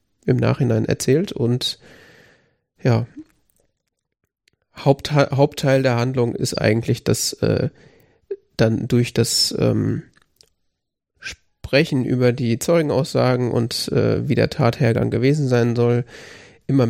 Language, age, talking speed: German, 30-49, 105 wpm